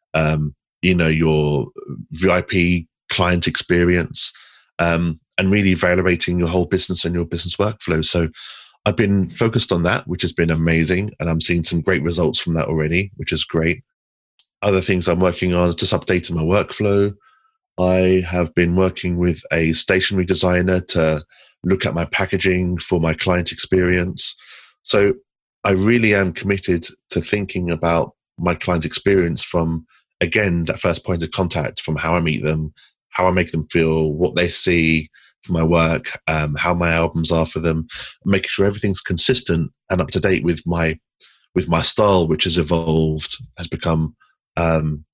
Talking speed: 170 wpm